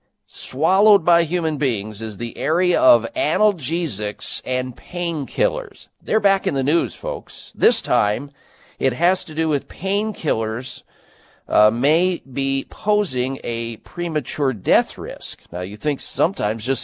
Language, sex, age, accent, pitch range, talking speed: English, male, 50-69, American, 120-175 Hz, 135 wpm